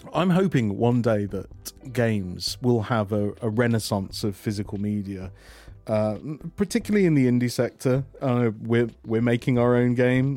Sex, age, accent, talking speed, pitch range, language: male, 30-49, British, 160 wpm, 105-135 Hz, English